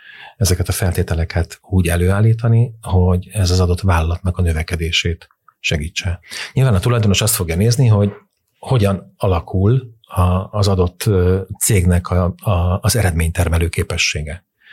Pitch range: 85-105 Hz